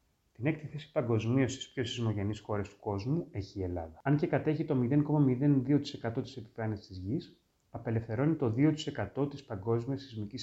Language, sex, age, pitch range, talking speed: Greek, male, 30-49, 105-140 Hz, 160 wpm